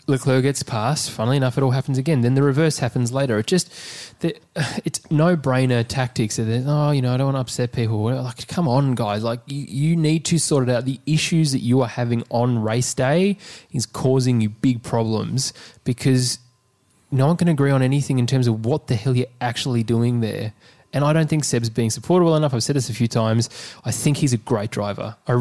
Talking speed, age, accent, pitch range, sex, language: 225 wpm, 20-39, Australian, 120-150 Hz, male, English